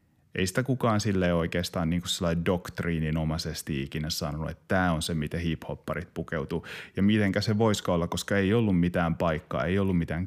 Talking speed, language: 170 wpm, Finnish